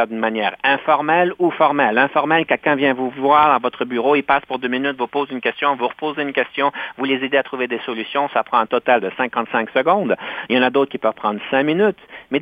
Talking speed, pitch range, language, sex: 245 wpm, 125-175 Hz, French, male